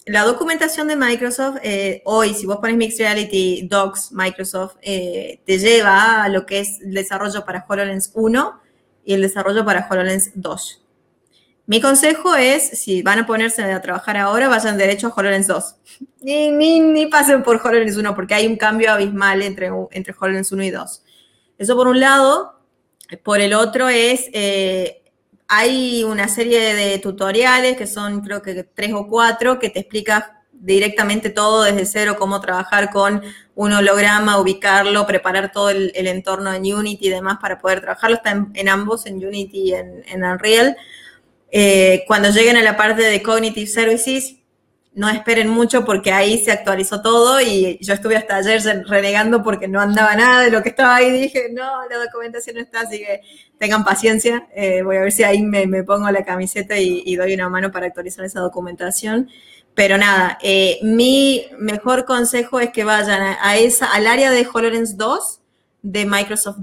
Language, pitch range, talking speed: Spanish, 195-235 Hz, 180 wpm